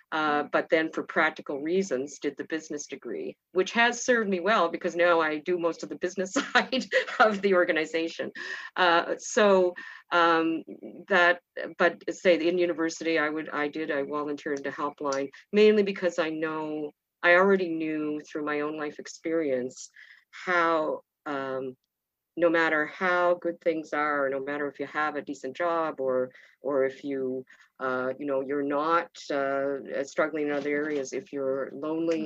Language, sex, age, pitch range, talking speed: English, female, 50-69, 140-170 Hz, 165 wpm